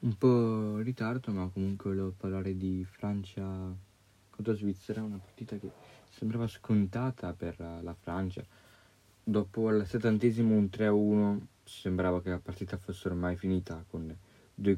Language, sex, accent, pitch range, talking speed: Italian, male, native, 90-105 Hz, 145 wpm